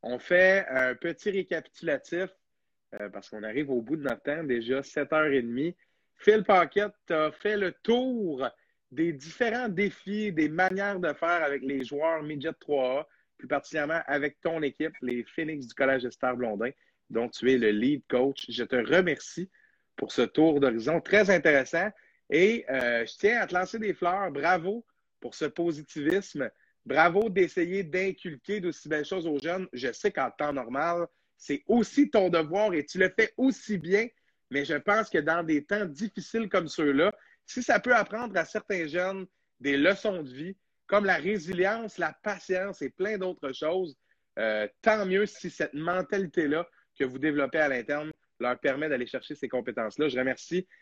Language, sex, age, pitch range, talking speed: French, male, 30-49, 140-195 Hz, 170 wpm